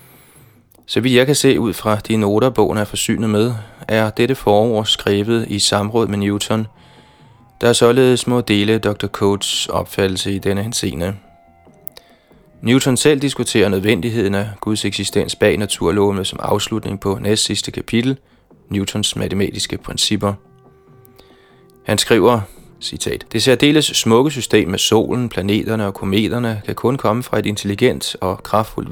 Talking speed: 145 wpm